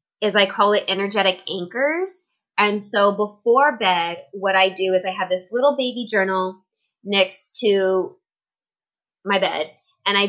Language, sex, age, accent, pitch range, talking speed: English, female, 20-39, American, 185-225 Hz, 150 wpm